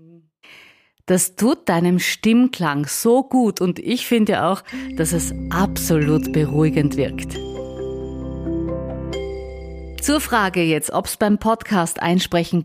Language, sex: German, female